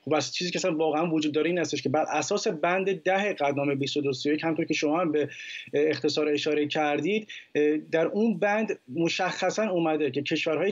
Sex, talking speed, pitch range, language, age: male, 160 wpm, 150-185 Hz, Persian, 30-49